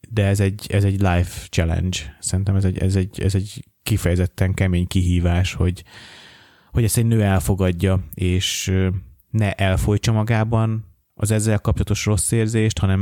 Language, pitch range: Hungarian, 90-100 Hz